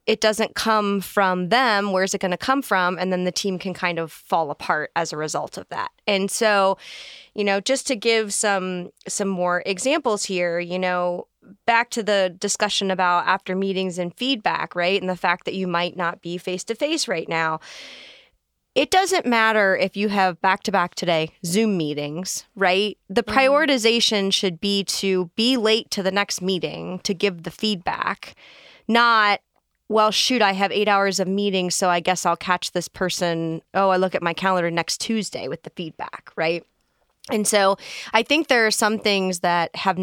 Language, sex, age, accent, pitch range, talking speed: English, female, 20-39, American, 180-220 Hz, 185 wpm